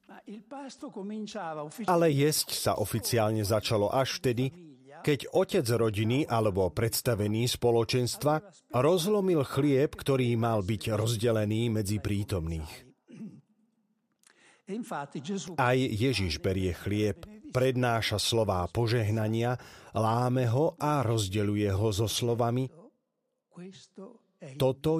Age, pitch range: 40-59, 105-155 Hz